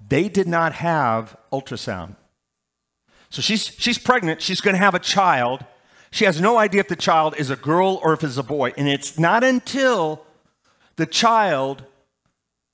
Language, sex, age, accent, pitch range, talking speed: English, male, 40-59, American, 115-165 Hz, 170 wpm